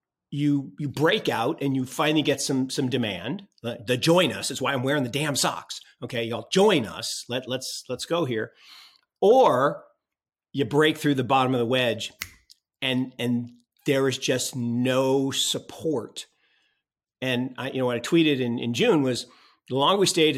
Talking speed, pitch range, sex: 180 wpm, 115-140 Hz, male